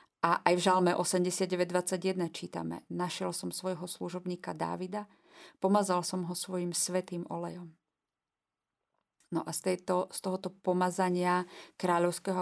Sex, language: female, Slovak